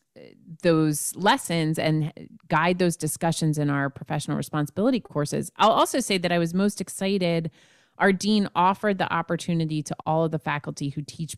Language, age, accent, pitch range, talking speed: English, 30-49, American, 145-170 Hz, 165 wpm